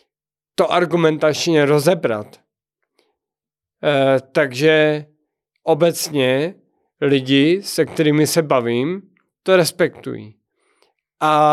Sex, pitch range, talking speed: male, 145-195 Hz, 75 wpm